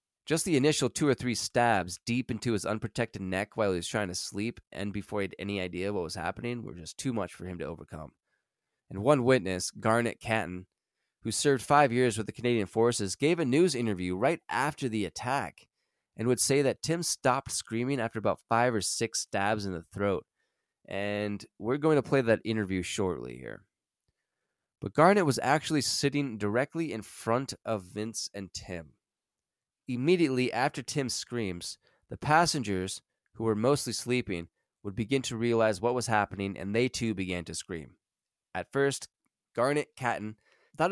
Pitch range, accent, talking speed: 100-130 Hz, American, 175 wpm